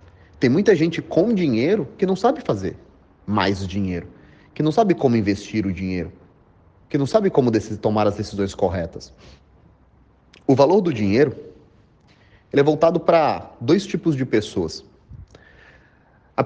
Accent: Brazilian